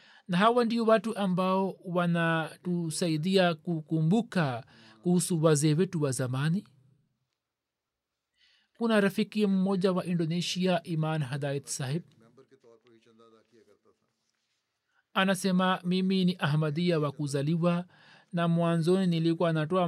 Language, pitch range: Swahili, 160-200 Hz